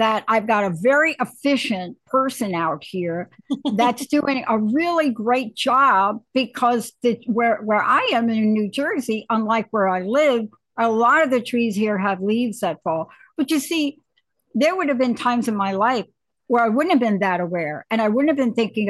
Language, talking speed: English, 195 wpm